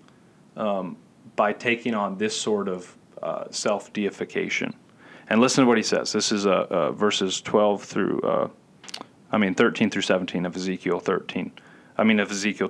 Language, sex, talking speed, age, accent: English, male, 165 wpm, 30-49, American